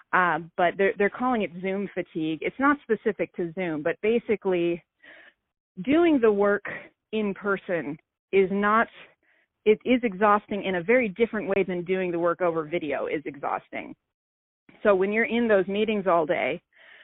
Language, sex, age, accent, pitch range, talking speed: English, female, 30-49, American, 170-205 Hz, 160 wpm